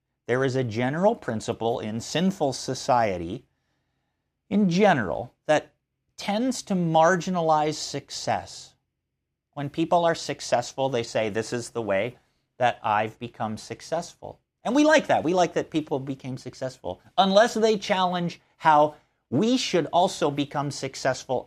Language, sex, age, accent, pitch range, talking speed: English, male, 50-69, American, 130-185 Hz, 135 wpm